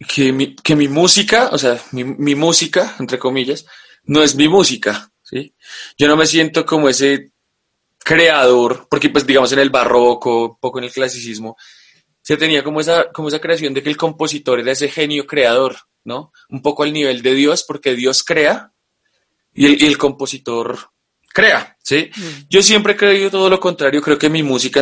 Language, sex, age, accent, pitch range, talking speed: Spanish, male, 20-39, Colombian, 135-170 Hz, 190 wpm